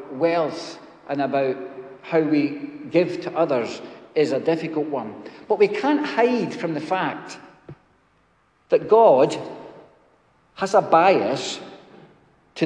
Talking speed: 120 wpm